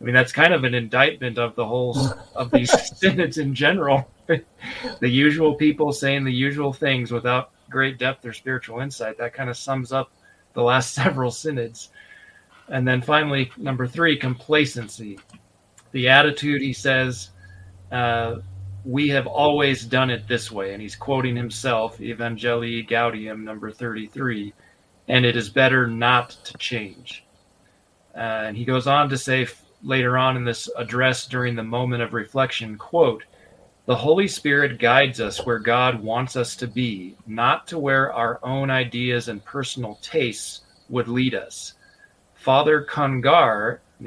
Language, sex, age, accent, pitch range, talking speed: English, male, 30-49, American, 115-135 Hz, 155 wpm